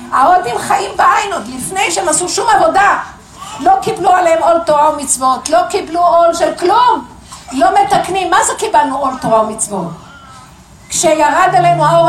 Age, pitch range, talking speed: 50-69, 260-340 Hz, 155 wpm